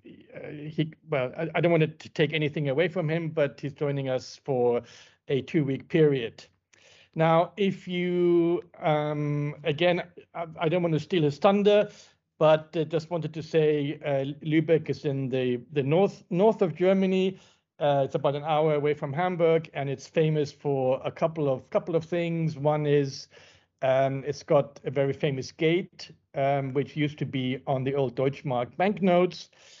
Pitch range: 130-160 Hz